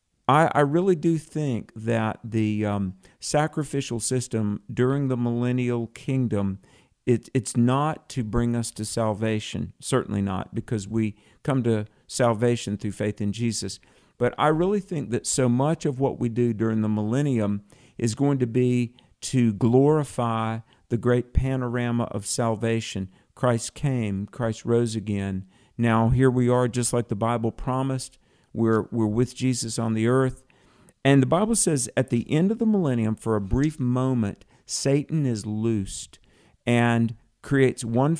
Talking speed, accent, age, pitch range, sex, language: 150 wpm, American, 50-69, 110-135 Hz, male, English